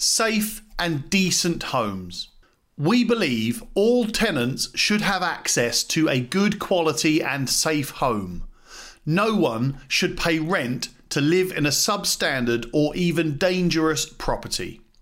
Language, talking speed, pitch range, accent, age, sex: English, 130 wpm, 135-190 Hz, British, 40-59, male